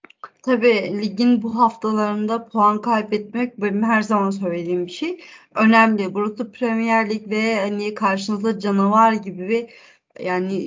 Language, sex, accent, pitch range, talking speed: Turkish, female, native, 195-230 Hz, 135 wpm